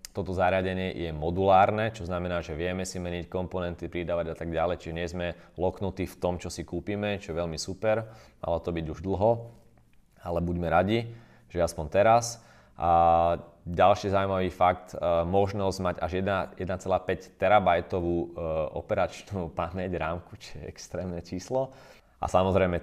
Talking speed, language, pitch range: 145 wpm, Slovak, 85-100 Hz